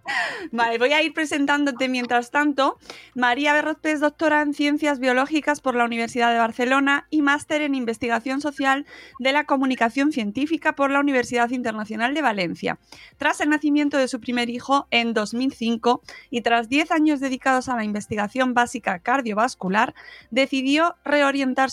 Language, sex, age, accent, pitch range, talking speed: Spanish, female, 20-39, Spanish, 225-280 Hz, 150 wpm